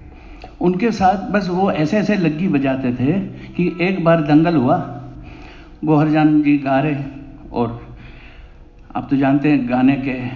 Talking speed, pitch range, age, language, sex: 140 wpm, 130-170 Hz, 60-79, Hindi, male